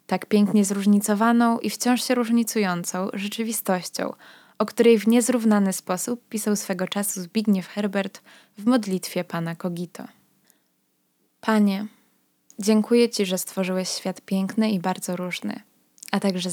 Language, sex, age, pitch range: Polish, female, 20-39, 185-215 Hz